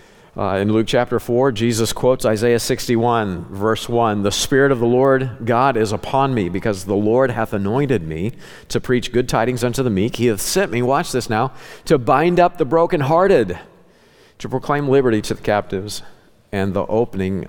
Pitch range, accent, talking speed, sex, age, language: 105-130 Hz, American, 185 wpm, male, 50-69, English